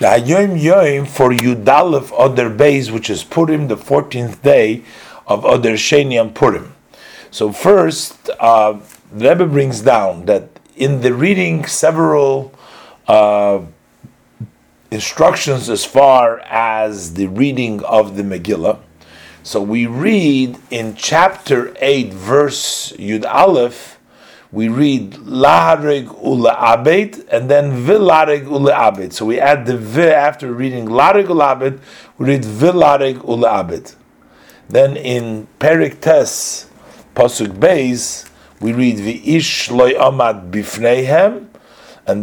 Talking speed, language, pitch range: 110 wpm, English, 110-145 Hz